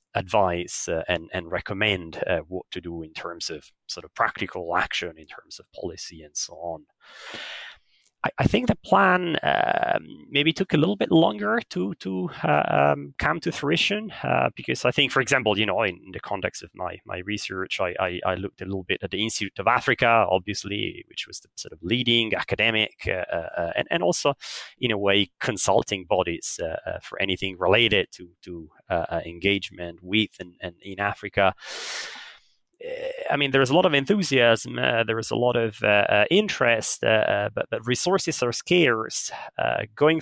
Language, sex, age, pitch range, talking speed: English, male, 30-49, 100-135 Hz, 185 wpm